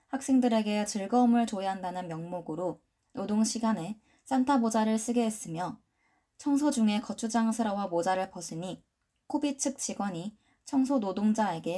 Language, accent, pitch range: Korean, native, 185-235 Hz